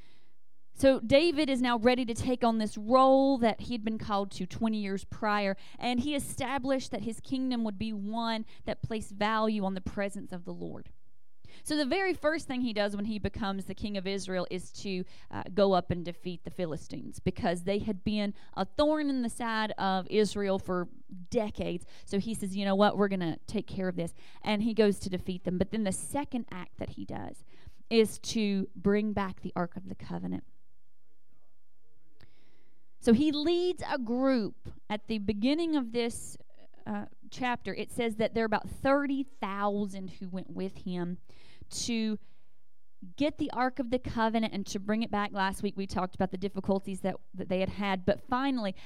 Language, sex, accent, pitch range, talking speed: English, female, American, 190-245 Hz, 195 wpm